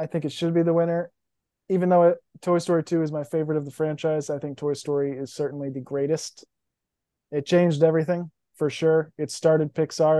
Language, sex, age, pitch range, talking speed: English, male, 20-39, 150-170 Hz, 205 wpm